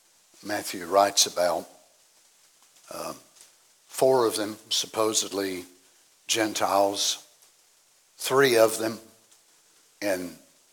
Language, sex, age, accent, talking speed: English, male, 60-79, American, 75 wpm